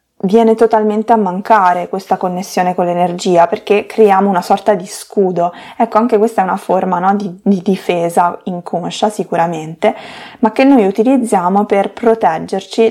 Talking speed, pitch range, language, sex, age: 145 wpm, 180-215 Hz, Italian, female, 20-39